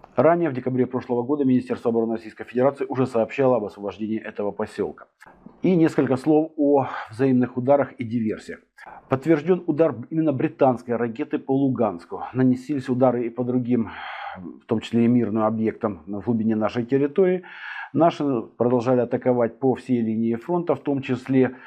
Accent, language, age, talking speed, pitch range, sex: native, Russian, 50-69, 150 wpm, 120-145 Hz, male